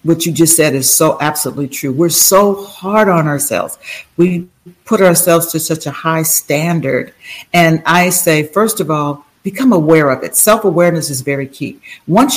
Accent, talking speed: American, 175 wpm